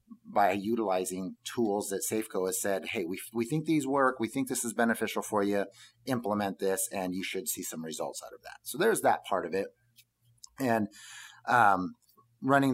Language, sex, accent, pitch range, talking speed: English, male, American, 105-120 Hz, 195 wpm